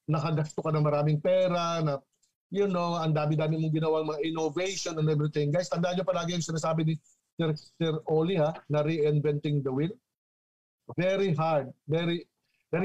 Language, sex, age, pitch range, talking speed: Filipino, male, 50-69, 145-170 Hz, 175 wpm